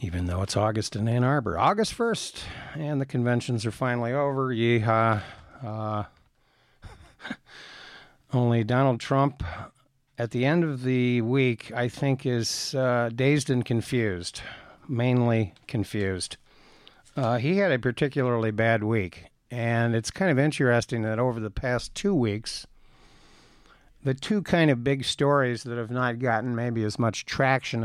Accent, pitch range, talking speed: American, 115-135 Hz, 145 wpm